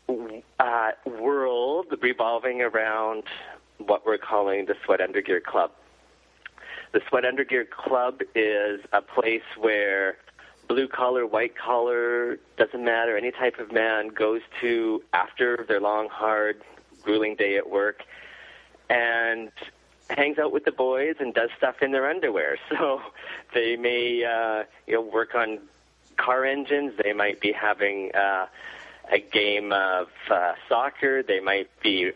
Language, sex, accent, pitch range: English, male, American, 110-130 Hz